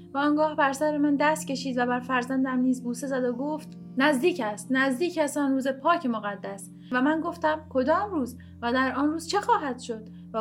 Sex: female